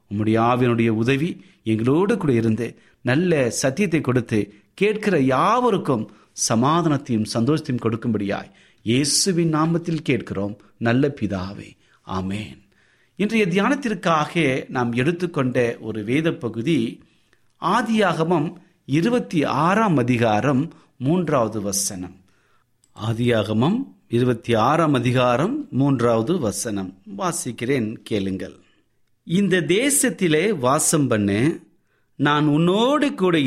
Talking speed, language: 85 wpm, Tamil